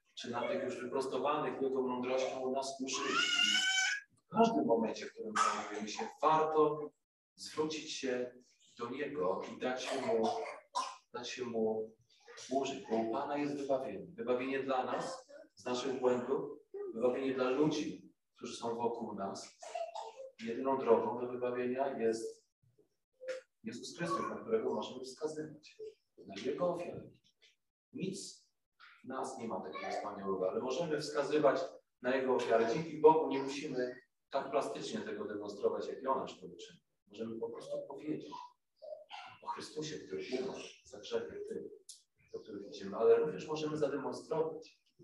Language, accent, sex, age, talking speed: Polish, native, male, 40-59, 135 wpm